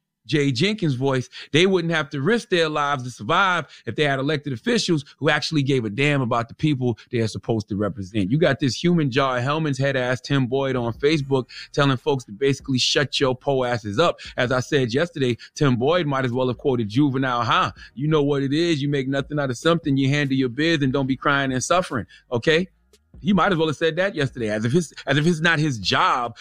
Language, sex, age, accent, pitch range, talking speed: English, male, 30-49, American, 125-175 Hz, 230 wpm